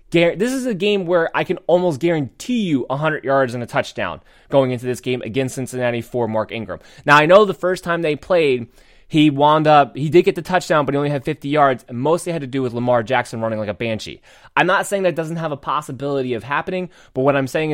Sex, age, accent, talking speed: male, 20-39, American, 245 wpm